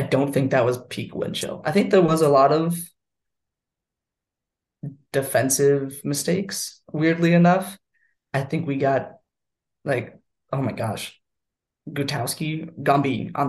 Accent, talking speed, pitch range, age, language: American, 135 wpm, 135-165 Hz, 20-39, English